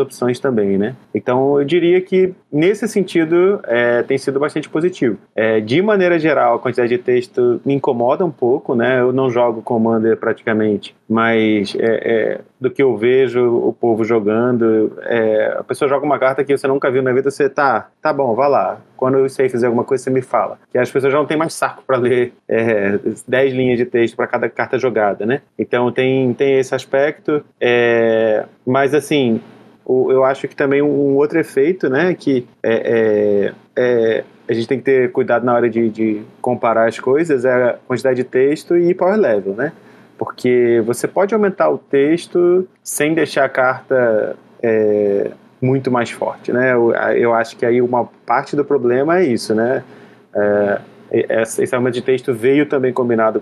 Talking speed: 180 wpm